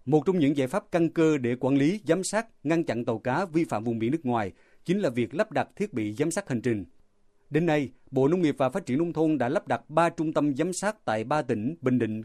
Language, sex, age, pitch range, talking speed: Vietnamese, male, 30-49, 120-160 Hz, 275 wpm